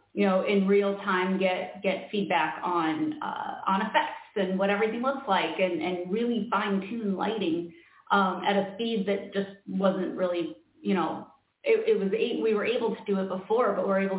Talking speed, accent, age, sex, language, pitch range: 195 wpm, American, 30-49, female, English, 185-205 Hz